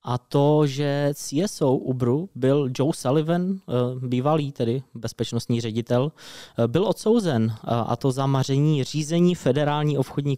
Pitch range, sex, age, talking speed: 115-145 Hz, male, 20-39, 120 wpm